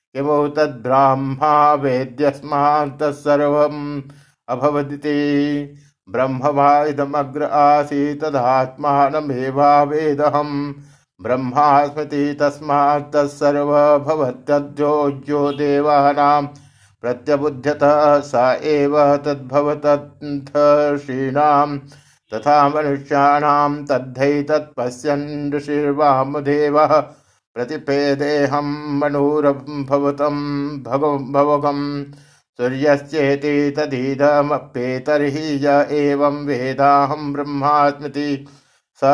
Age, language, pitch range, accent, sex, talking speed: 50-69, Hindi, 140-145 Hz, native, male, 45 wpm